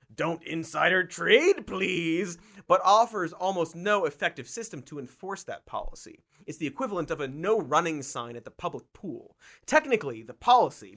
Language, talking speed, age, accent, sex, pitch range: English, 160 wpm, 30-49, American, male, 130-210 Hz